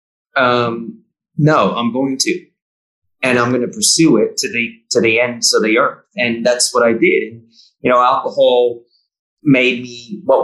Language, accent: English, American